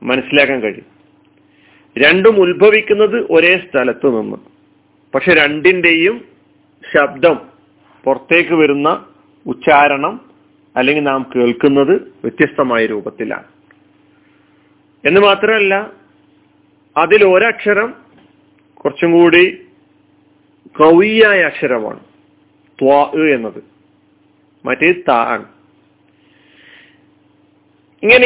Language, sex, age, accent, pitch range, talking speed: Malayalam, male, 40-59, native, 145-205 Hz, 65 wpm